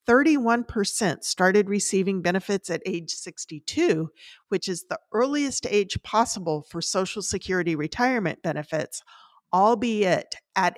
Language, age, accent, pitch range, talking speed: English, 50-69, American, 170-220 Hz, 105 wpm